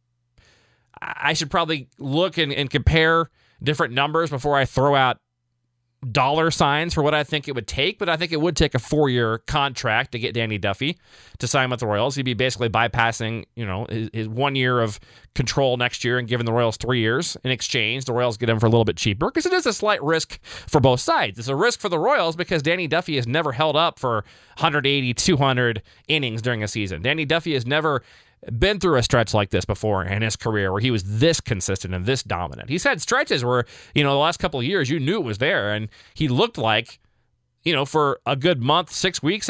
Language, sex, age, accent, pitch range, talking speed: English, male, 30-49, American, 120-165 Hz, 230 wpm